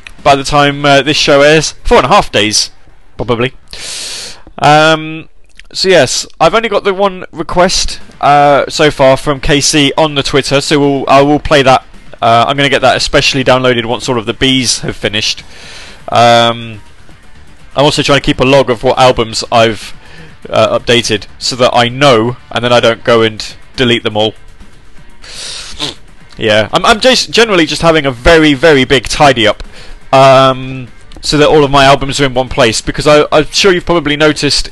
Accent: British